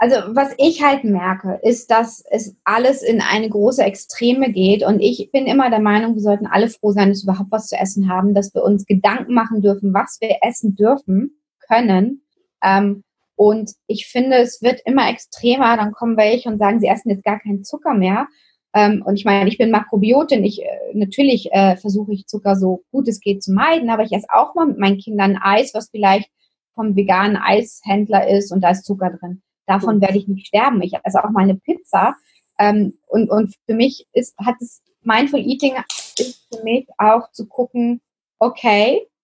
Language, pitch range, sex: German, 200-255 Hz, female